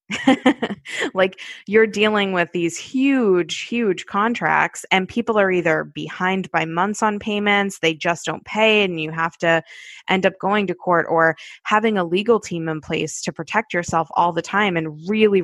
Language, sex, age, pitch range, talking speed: English, female, 20-39, 170-210 Hz, 175 wpm